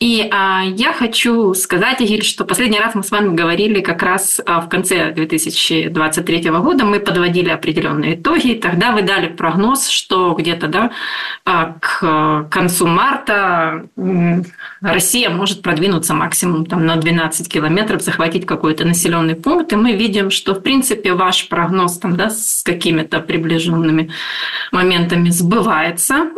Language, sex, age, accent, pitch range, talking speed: Ukrainian, female, 20-39, native, 170-210 Hz, 135 wpm